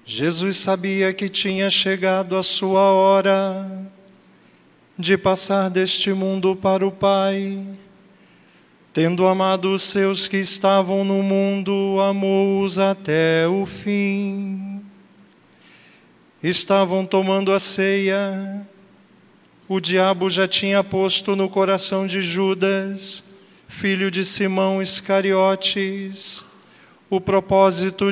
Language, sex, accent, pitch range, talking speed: Portuguese, male, Brazilian, 190-195 Hz, 100 wpm